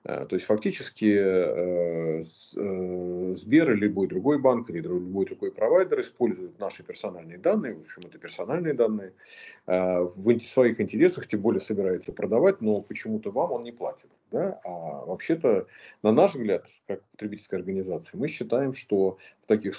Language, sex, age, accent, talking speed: Russian, male, 40-59, native, 145 wpm